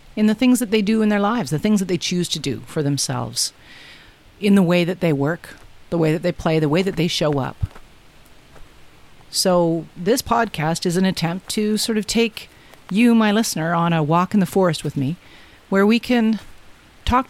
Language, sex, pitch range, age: English, female, 165-210 Hz, 50-69